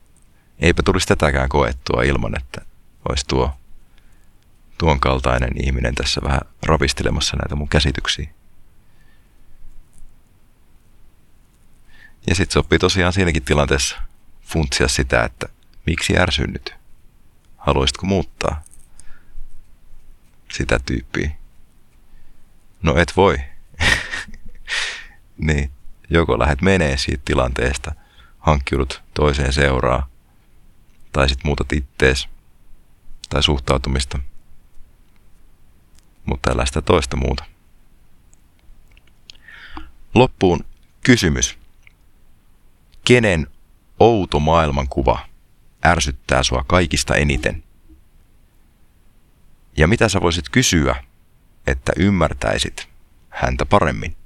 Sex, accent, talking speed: male, native, 80 wpm